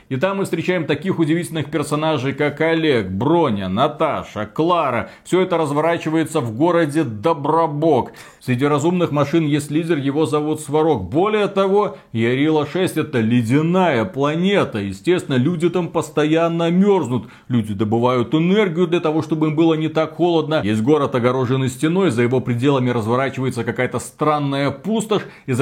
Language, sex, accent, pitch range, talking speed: Russian, male, native, 125-165 Hz, 140 wpm